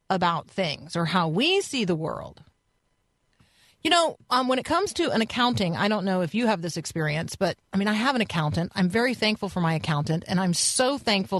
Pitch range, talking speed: 180-235 Hz, 220 wpm